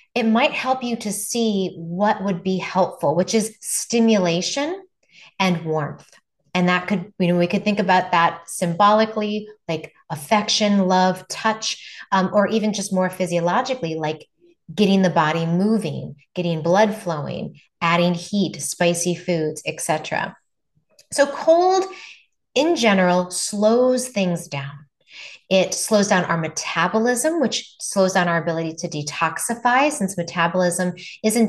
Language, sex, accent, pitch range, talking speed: English, female, American, 170-220 Hz, 135 wpm